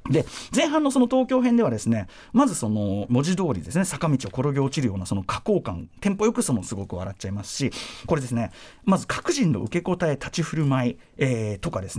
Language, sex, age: Japanese, male, 40-59